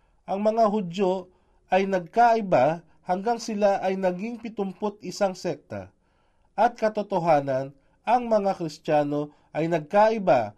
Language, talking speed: Filipino, 100 wpm